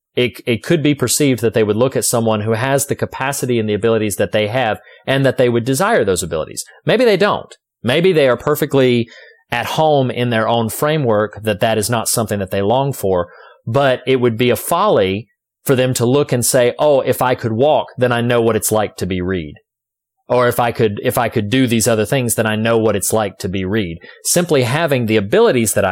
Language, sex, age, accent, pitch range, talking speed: English, male, 30-49, American, 105-130 Hz, 235 wpm